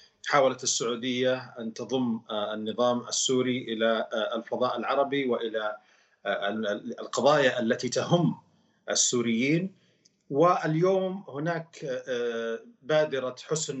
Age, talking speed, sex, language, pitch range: 40-59, 80 wpm, male, Arabic, 125-145 Hz